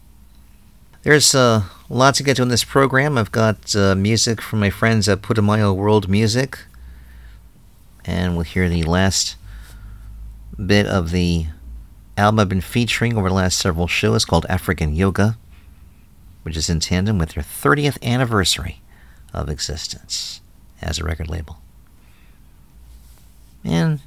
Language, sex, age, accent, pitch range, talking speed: English, male, 40-59, American, 80-105 Hz, 135 wpm